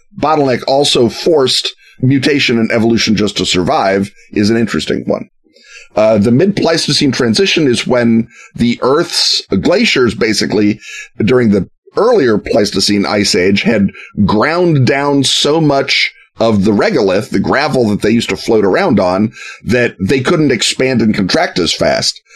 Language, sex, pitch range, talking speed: English, male, 100-135 Hz, 150 wpm